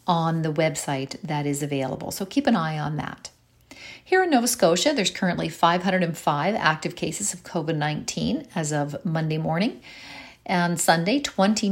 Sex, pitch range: female, 155-195 Hz